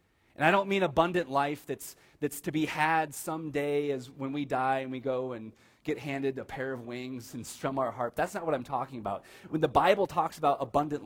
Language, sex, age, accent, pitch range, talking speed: English, male, 30-49, American, 115-150 Hz, 230 wpm